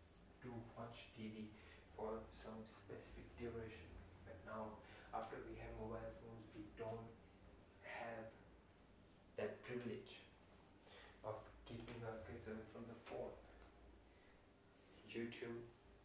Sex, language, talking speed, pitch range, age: male, Hindi, 100 wpm, 100-110 Hz, 20-39